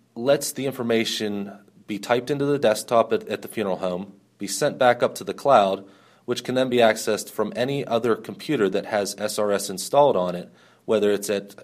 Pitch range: 95-115 Hz